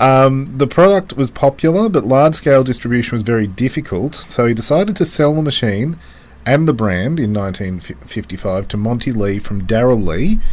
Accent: Australian